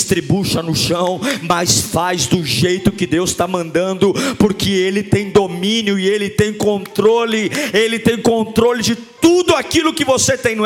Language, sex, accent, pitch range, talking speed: Portuguese, male, Brazilian, 205-290 Hz, 160 wpm